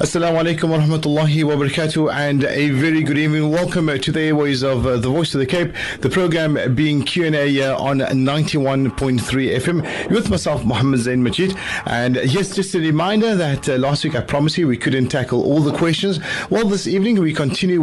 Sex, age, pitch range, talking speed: male, 30-49, 120-170 Hz, 185 wpm